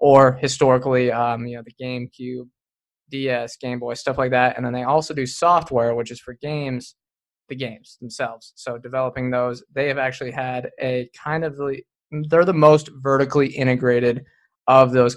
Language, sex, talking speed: English, male, 170 wpm